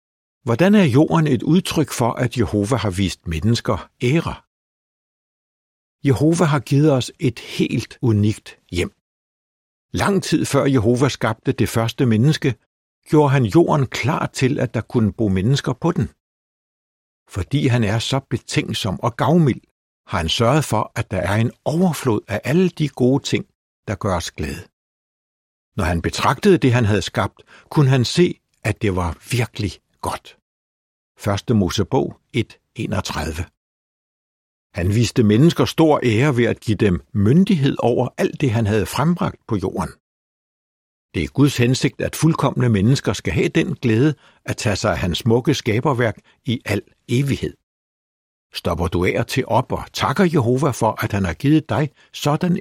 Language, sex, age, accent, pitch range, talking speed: Danish, male, 60-79, native, 105-145 Hz, 155 wpm